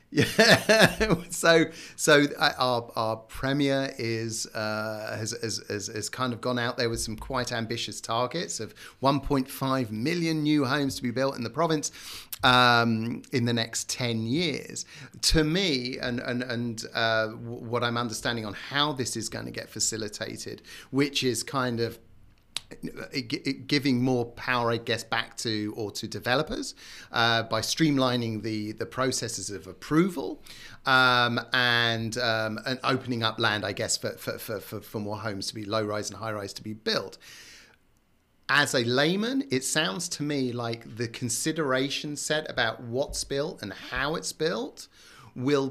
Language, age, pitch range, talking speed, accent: English, 30-49, 110-135 Hz, 160 wpm, British